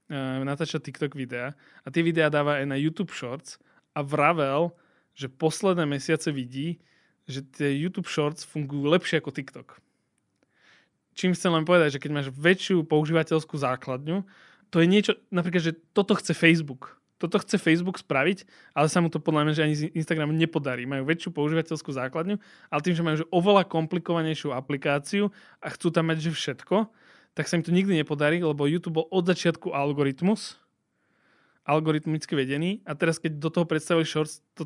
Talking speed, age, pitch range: 170 wpm, 20-39, 150-175 Hz